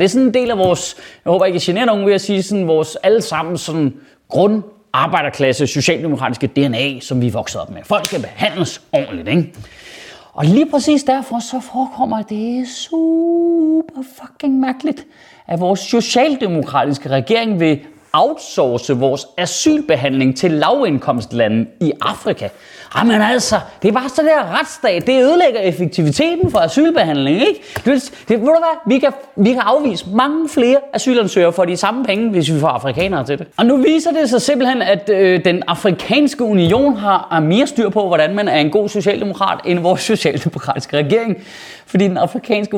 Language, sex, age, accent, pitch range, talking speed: Danish, male, 30-49, native, 155-240 Hz, 160 wpm